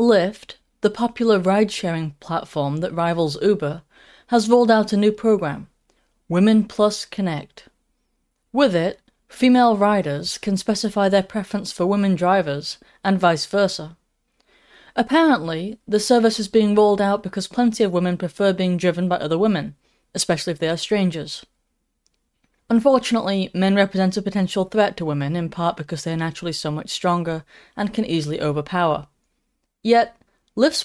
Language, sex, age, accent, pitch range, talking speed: English, female, 30-49, British, 170-220 Hz, 150 wpm